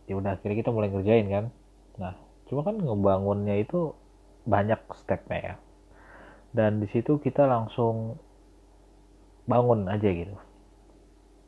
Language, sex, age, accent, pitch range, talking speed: Indonesian, male, 20-39, native, 95-105 Hz, 120 wpm